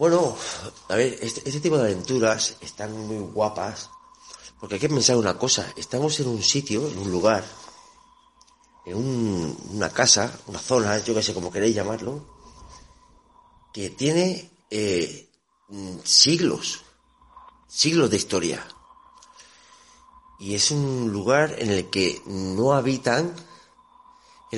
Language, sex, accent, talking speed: Spanish, male, Spanish, 125 wpm